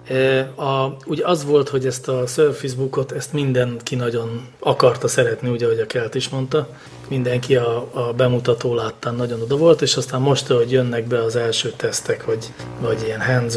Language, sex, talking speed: English, male, 175 wpm